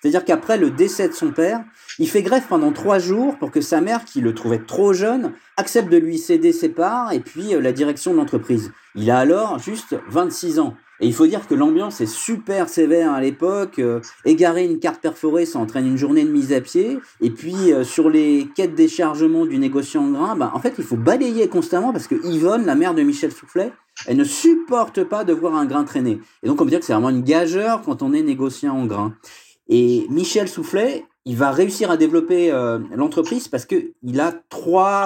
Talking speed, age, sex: 225 wpm, 40-59, male